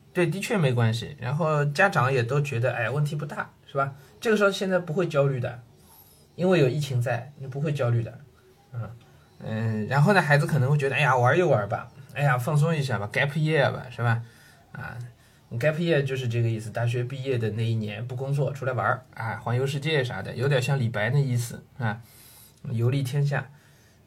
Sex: male